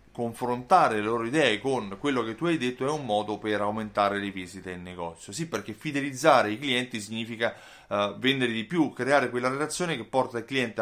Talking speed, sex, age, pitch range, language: 200 wpm, male, 30-49, 110-145 Hz, Italian